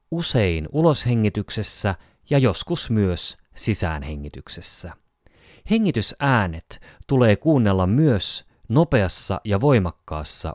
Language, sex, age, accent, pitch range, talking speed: Finnish, male, 30-49, native, 85-115 Hz, 75 wpm